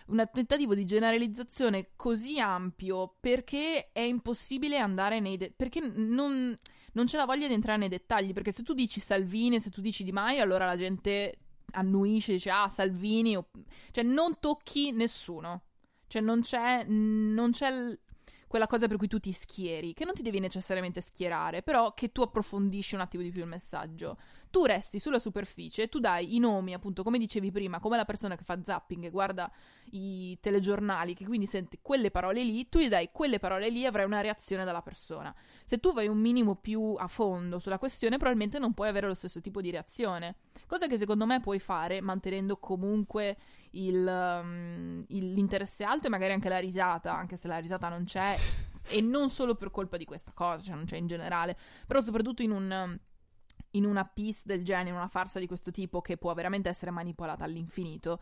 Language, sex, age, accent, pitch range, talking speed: Italian, female, 20-39, native, 185-230 Hz, 195 wpm